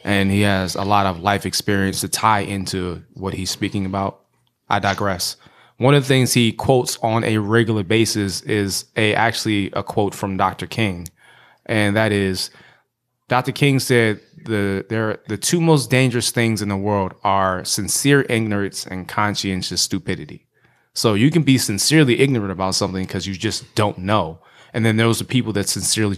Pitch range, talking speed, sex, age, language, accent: 100-120 Hz, 175 wpm, male, 20-39, English, American